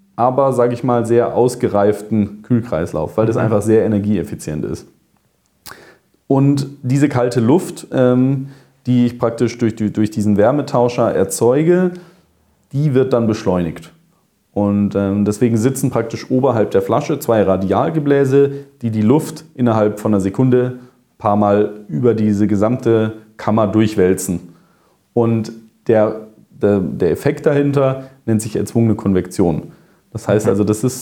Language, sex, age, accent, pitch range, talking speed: English, male, 30-49, German, 105-125 Hz, 125 wpm